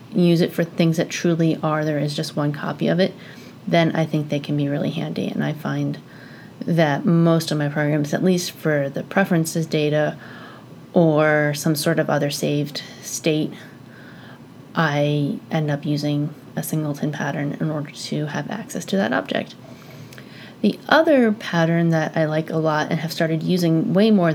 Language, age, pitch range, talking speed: English, 30-49, 150-170 Hz, 175 wpm